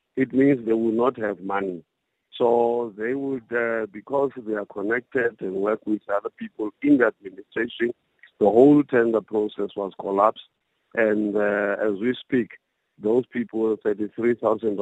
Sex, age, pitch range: male, 50-69, 100-120 Hz